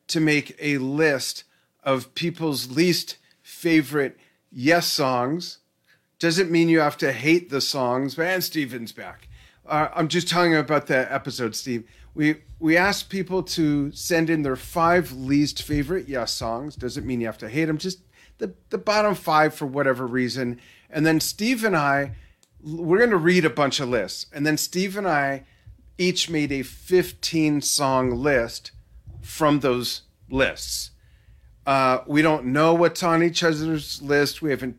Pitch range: 130-170 Hz